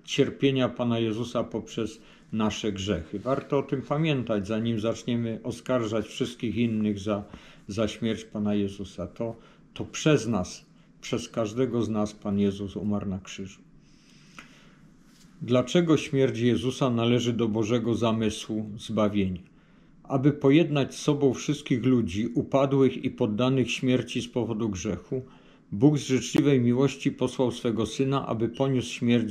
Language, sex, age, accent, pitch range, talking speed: Polish, male, 50-69, native, 110-130 Hz, 130 wpm